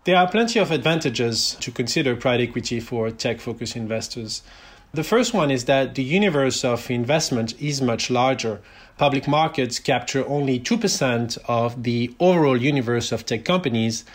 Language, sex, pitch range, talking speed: English, male, 115-145 Hz, 155 wpm